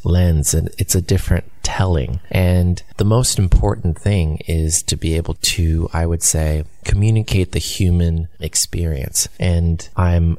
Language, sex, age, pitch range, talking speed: English, male, 30-49, 80-95 Hz, 145 wpm